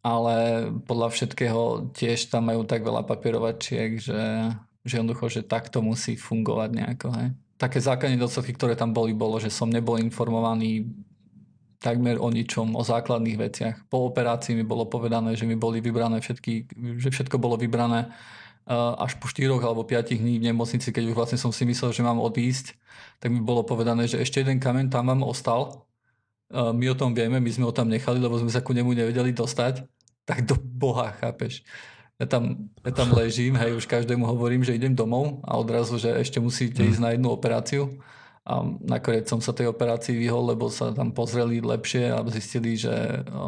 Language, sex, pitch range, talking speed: Slovak, male, 115-125 Hz, 180 wpm